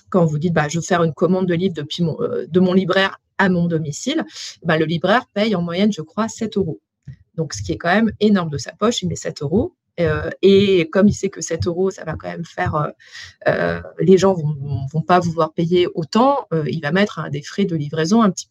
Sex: female